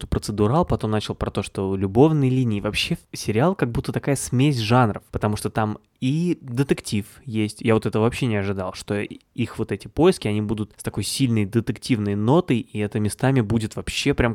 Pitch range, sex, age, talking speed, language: 105-130 Hz, male, 20-39, 190 wpm, Russian